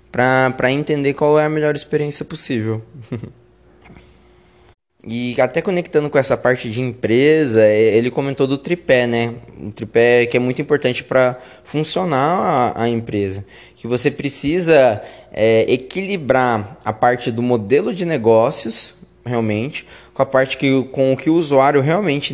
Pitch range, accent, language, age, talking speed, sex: 120-155 Hz, Brazilian, Portuguese, 20-39, 145 wpm, male